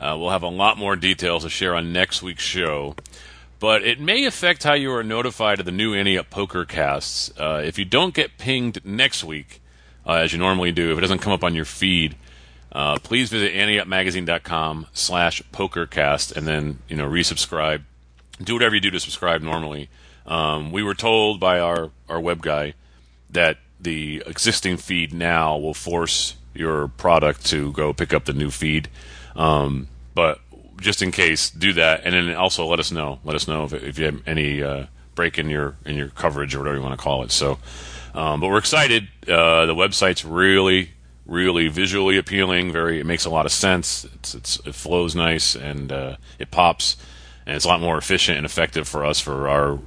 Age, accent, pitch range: 40-59, American, 70-90 Hz